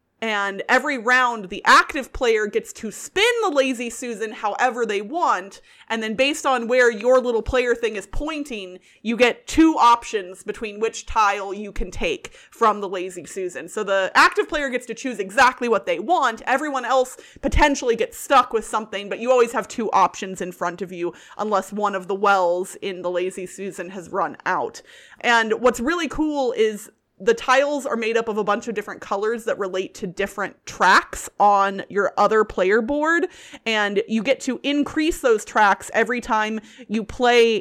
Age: 30-49